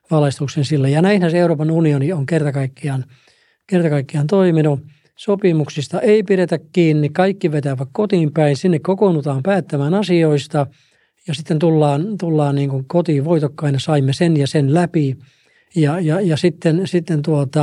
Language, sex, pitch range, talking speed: Finnish, male, 140-170 Hz, 135 wpm